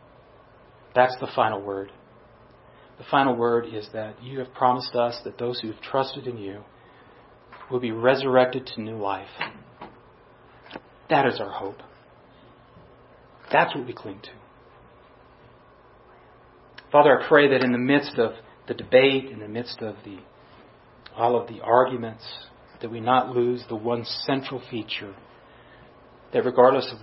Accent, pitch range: American, 115-130 Hz